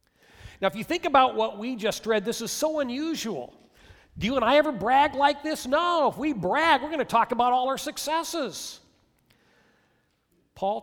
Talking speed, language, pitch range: 190 wpm, English, 160-245 Hz